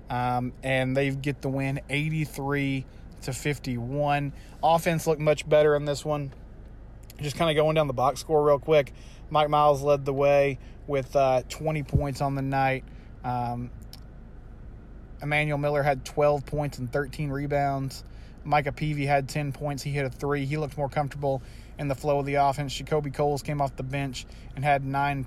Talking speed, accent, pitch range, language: 180 wpm, American, 130-150 Hz, English